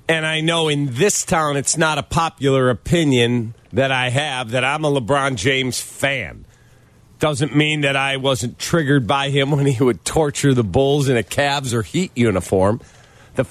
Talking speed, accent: 180 wpm, American